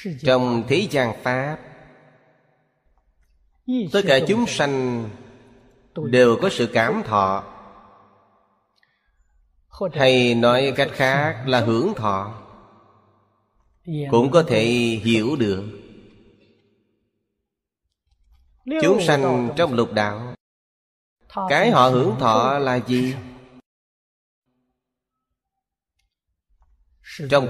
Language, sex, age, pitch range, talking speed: Vietnamese, male, 30-49, 105-140 Hz, 80 wpm